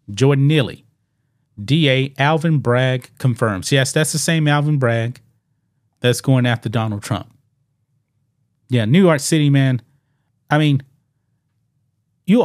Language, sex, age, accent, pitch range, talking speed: English, male, 30-49, American, 120-145 Hz, 120 wpm